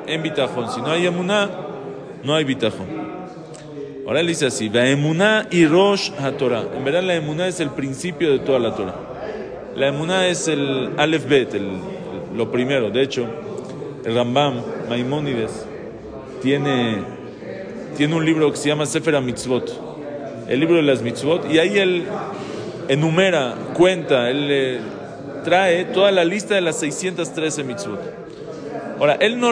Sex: male